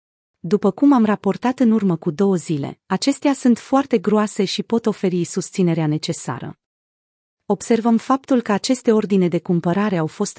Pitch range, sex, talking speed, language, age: 175-230 Hz, female, 155 wpm, Romanian, 30-49